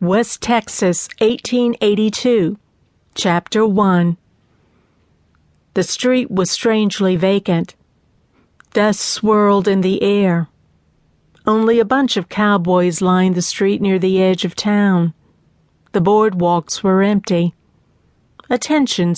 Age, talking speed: 50-69, 105 wpm